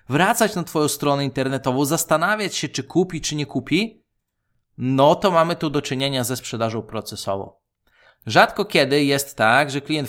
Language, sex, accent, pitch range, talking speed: Polish, male, native, 130-160 Hz, 160 wpm